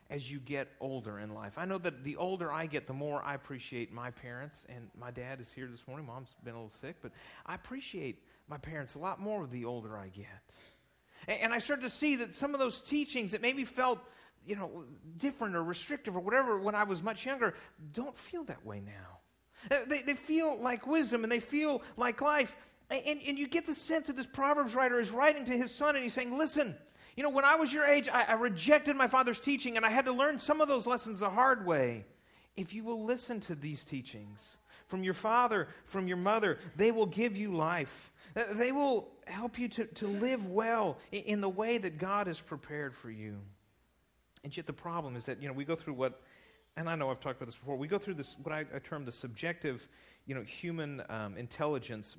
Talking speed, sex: 230 wpm, male